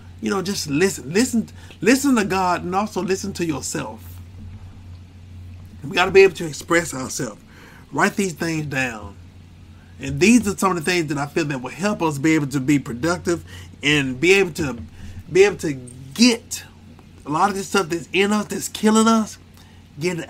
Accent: American